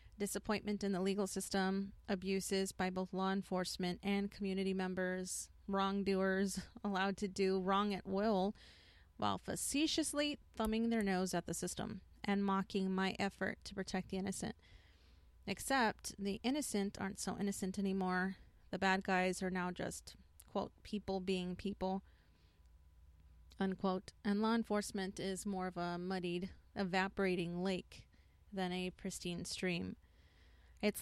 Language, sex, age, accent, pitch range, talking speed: English, female, 30-49, American, 180-200 Hz, 135 wpm